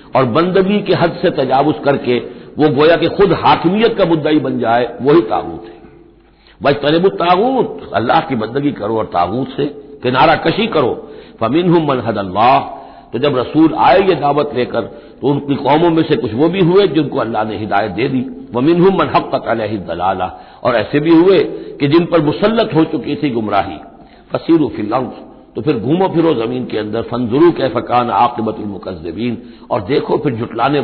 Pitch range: 130-165 Hz